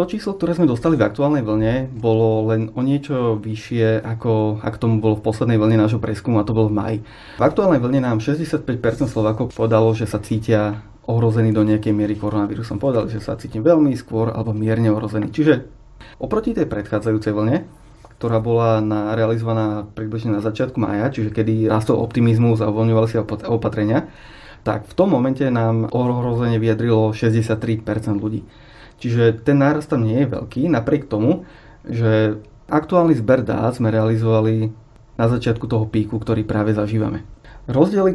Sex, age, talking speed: male, 30-49, 165 wpm